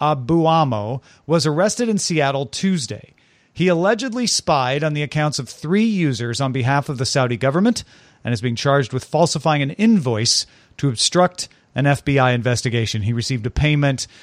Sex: male